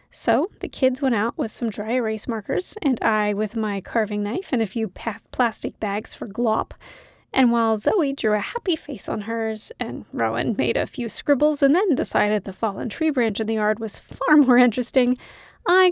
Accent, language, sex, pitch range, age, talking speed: American, English, female, 220-300 Hz, 30-49, 200 wpm